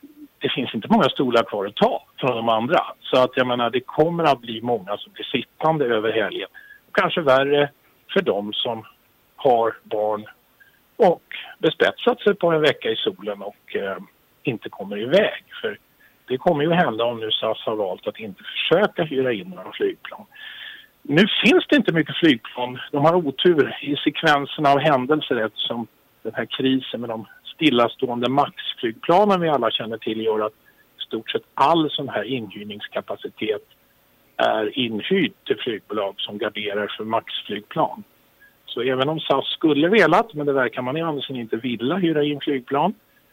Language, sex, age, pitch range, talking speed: Swedish, male, 50-69, 120-170 Hz, 170 wpm